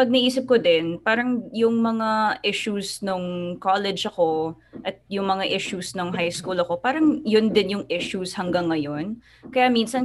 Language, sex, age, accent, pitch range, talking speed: Filipino, female, 20-39, native, 170-215 Hz, 165 wpm